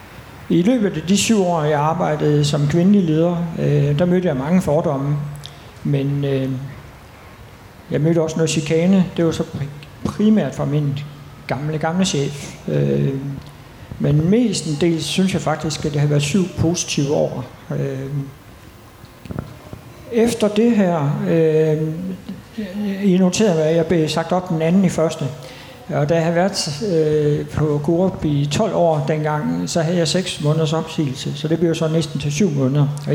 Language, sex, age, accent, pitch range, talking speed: Danish, male, 60-79, native, 145-175 Hz, 150 wpm